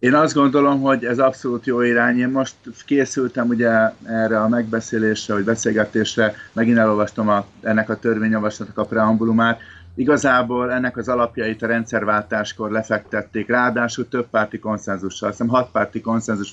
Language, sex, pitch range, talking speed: Hungarian, male, 105-120 Hz, 140 wpm